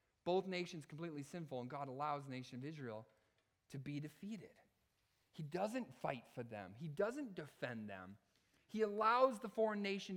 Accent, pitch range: American, 135-215 Hz